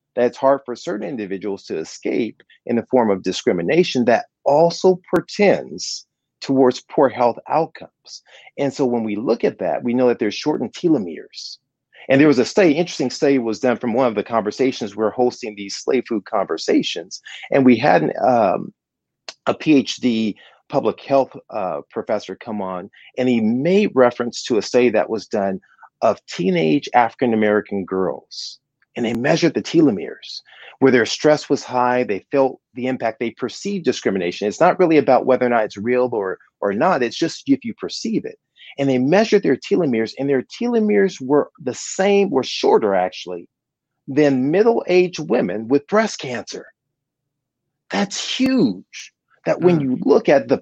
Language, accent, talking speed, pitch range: English, American, 170 wpm, 115-175 Hz